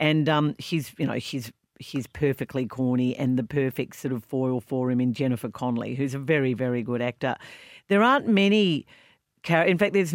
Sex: female